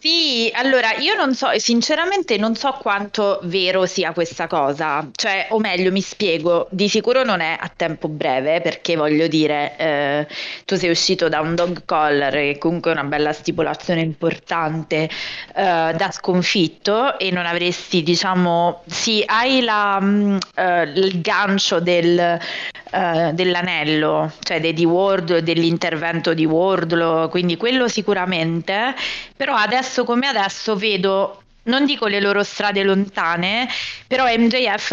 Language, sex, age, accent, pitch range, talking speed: Italian, female, 20-39, native, 165-205 Hz, 130 wpm